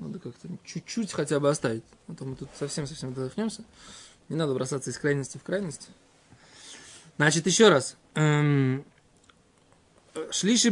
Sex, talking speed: male, 130 wpm